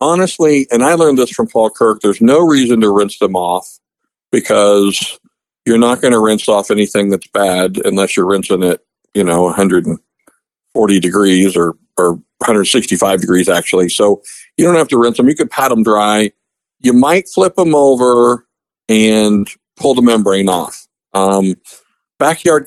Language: English